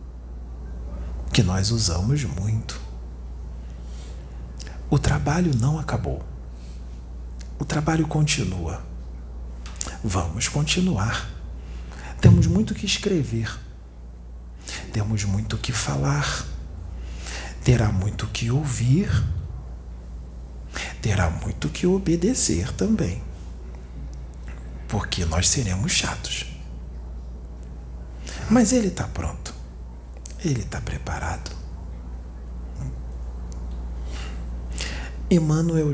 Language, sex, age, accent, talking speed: Portuguese, male, 50-69, Brazilian, 75 wpm